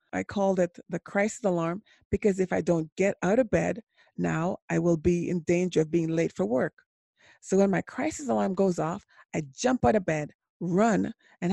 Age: 30-49